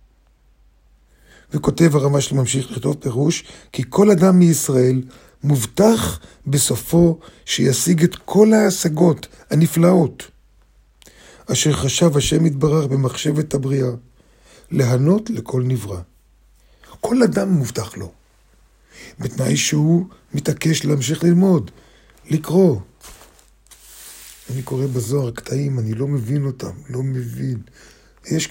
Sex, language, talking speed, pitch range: male, Hebrew, 100 wpm, 125-165 Hz